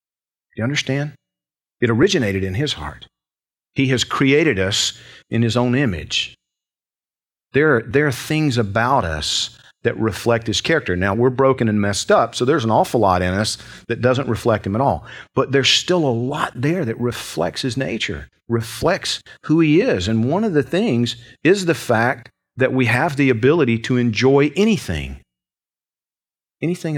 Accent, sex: American, male